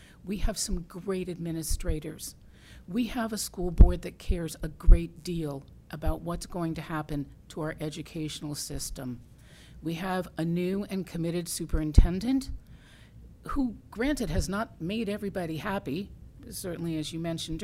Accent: American